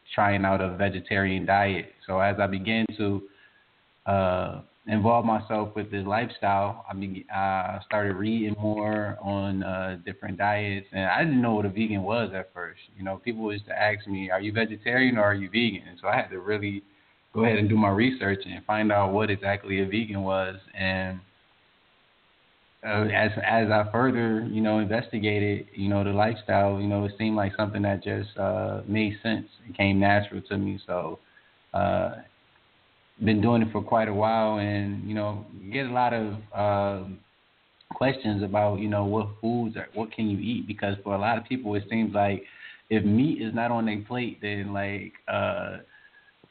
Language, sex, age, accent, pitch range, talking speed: English, male, 20-39, American, 100-110 Hz, 190 wpm